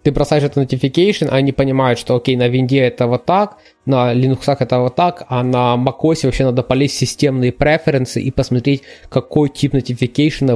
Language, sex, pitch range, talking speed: Ukrainian, male, 120-150 Hz, 175 wpm